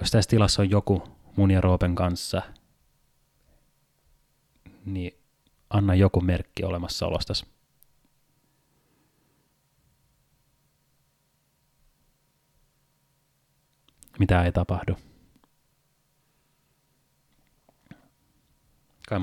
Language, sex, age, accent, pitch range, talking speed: Finnish, male, 30-49, native, 90-115 Hz, 55 wpm